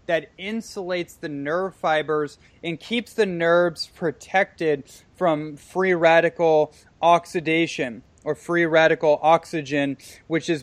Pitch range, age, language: 150-180 Hz, 20-39, English